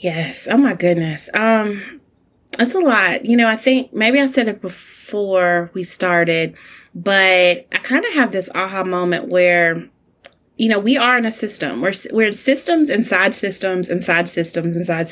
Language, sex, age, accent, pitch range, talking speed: English, female, 20-39, American, 175-225 Hz, 170 wpm